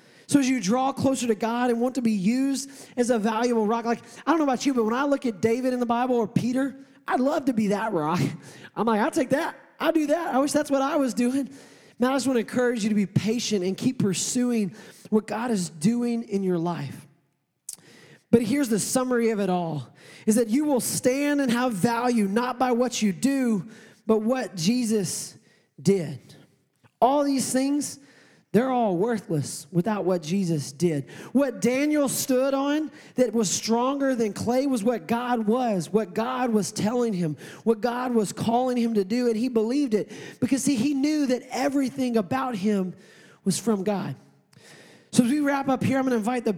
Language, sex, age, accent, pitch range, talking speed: English, male, 20-39, American, 210-260 Hz, 205 wpm